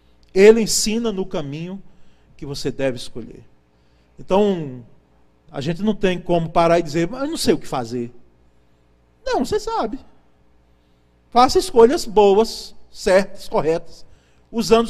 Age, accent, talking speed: 40-59, Brazilian, 135 wpm